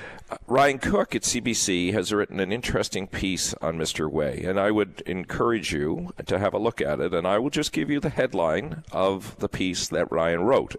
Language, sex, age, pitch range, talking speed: English, male, 50-69, 90-110 Hz, 205 wpm